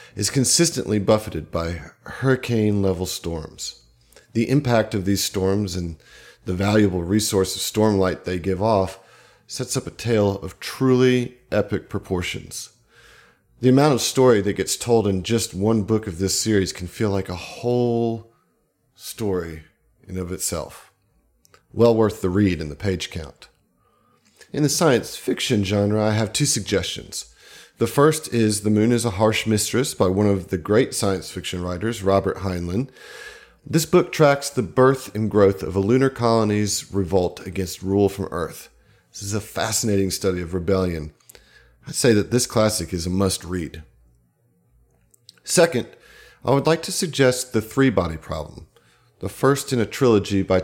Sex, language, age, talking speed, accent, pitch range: male, English, 40-59, 160 wpm, American, 95-120 Hz